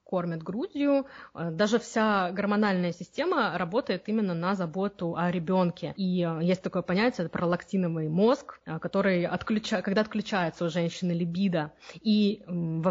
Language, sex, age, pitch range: Russian, female, 20-39, 170-205 Hz